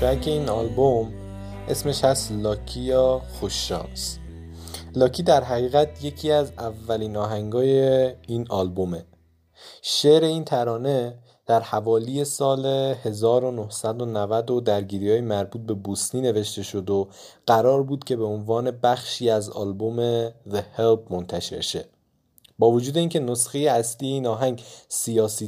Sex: male